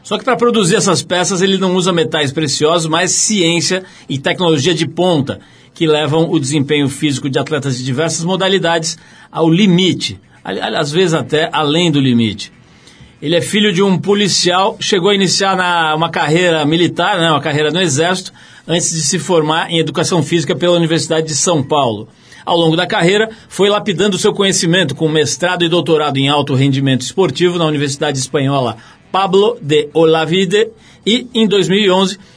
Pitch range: 150-195 Hz